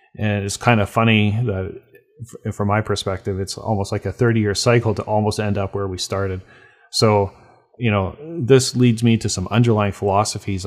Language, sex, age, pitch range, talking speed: English, male, 30-49, 100-115 Hz, 180 wpm